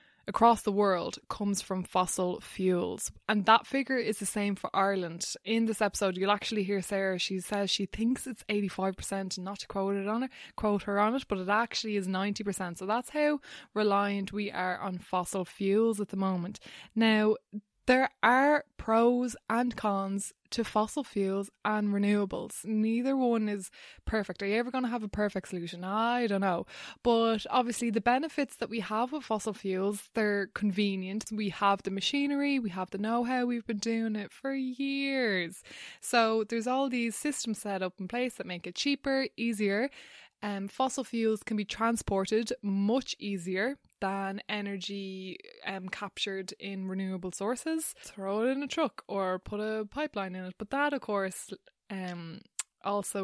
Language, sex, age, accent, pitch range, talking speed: English, female, 20-39, Irish, 195-230 Hz, 175 wpm